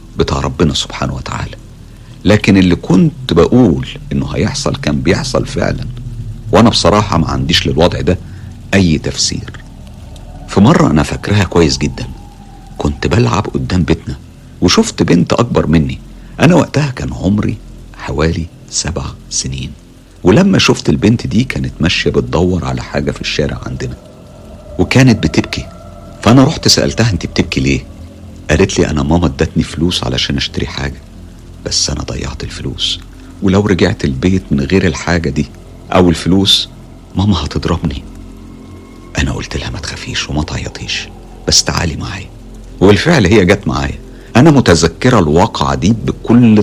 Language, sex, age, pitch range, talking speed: Arabic, male, 50-69, 80-110 Hz, 135 wpm